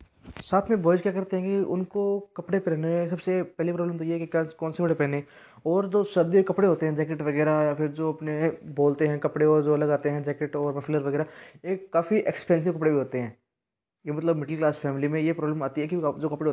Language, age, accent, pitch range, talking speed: Hindi, 20-39, native, 145-170 Hz, 240 wpm